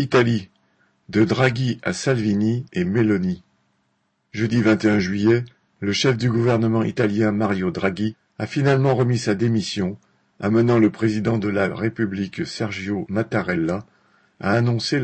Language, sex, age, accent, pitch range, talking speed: French, male, 50-69, French, 100-120 Hz, 130 wpm